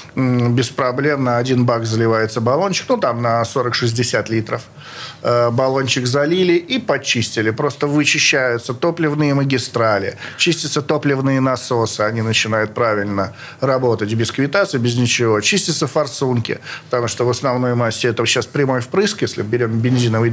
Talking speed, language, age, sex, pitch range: 135 wpm, Russian, 40-59, male, 120-155 Hz